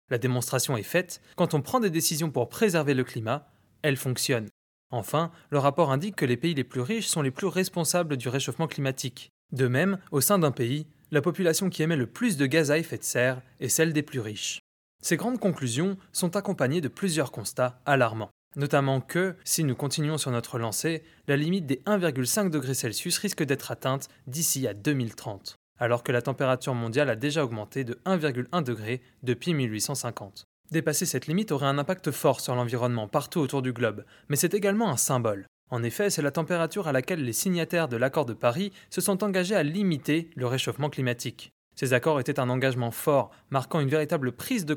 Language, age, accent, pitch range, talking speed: French, 20-39, French, 125-170 Hz, 195 wpm